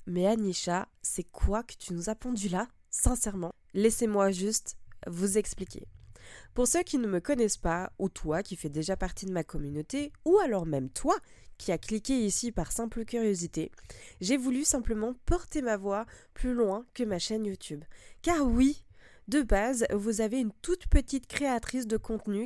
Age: 20-39